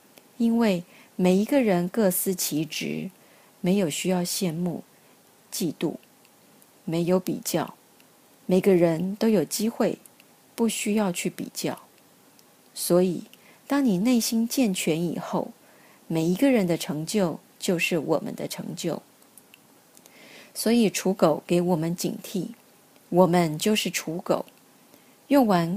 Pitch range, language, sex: 175-230 Hz, Chinese, female